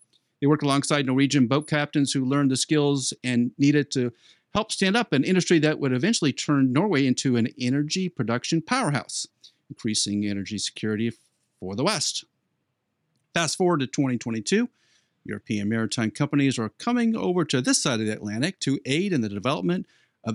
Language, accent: English, American